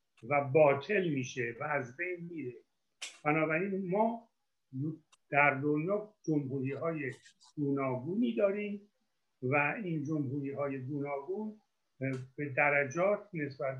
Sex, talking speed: male, 100 wpm